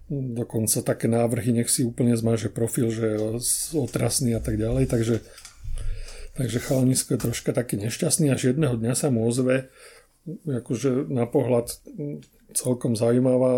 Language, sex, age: Slovak, male, 40-59